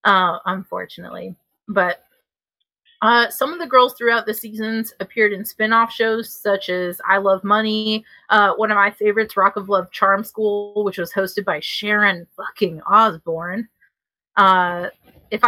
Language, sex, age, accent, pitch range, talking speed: English, female, 30-49, American, 185-225 Hz, 150 wpm